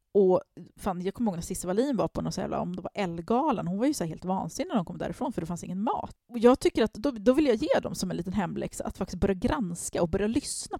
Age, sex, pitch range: 30-49, female, 185-235 Hz